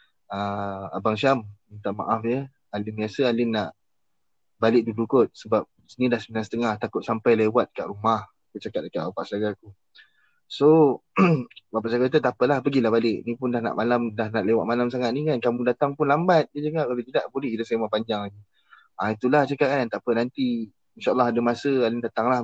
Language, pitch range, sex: Malay, 110-140 Hz, male